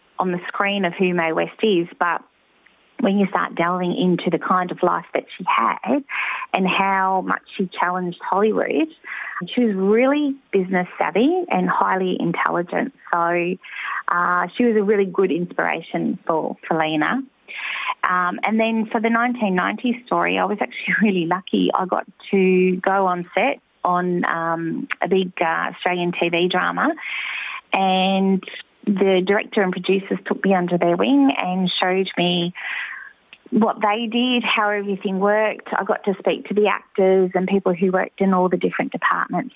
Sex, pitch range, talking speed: female, 180-220 Hz, 160 wpm